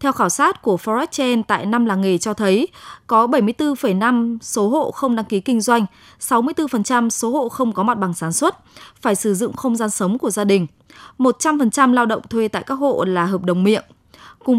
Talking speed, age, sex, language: 210 wpm, 20-39, female, Vietnamese